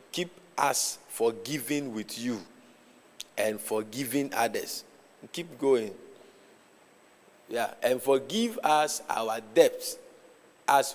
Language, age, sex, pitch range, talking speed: English, 50-69, male, 130-200 Hz, 95 wpm